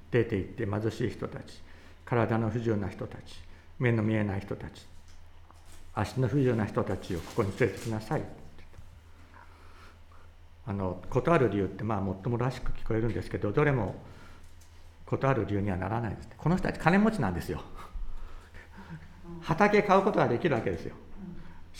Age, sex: 60-79, male